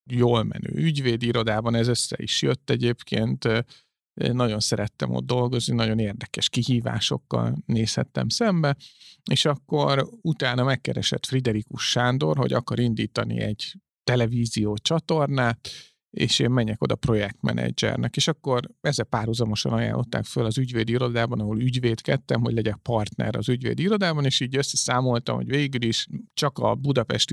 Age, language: 50-69, Hungarian